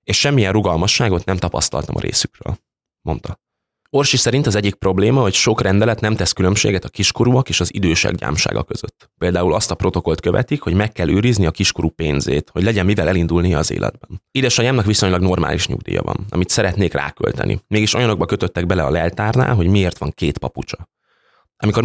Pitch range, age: 85-110 Hz, 20-39